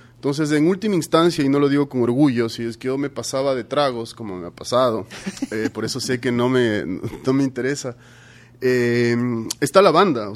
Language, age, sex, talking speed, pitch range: Spanish, 30-49, male, 215 wpm, 125-165 Hz